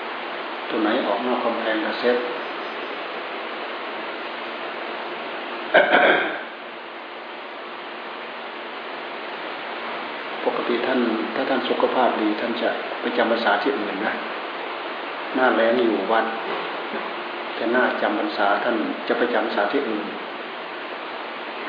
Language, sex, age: Thai, male, 60-79